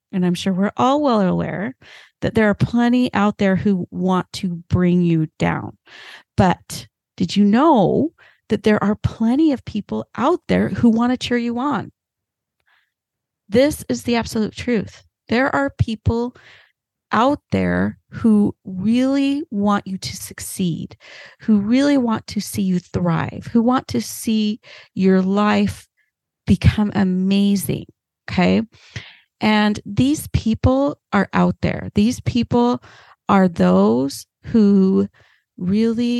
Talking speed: 135 wpm